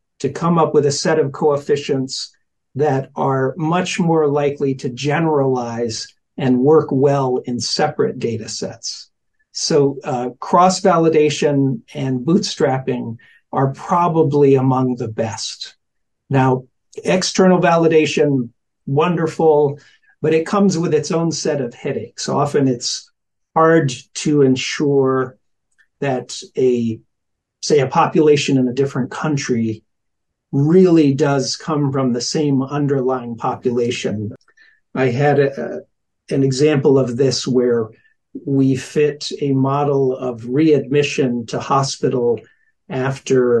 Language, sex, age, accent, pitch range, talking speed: English, male, 50-69, American, 130-155 Hz, 115 wpm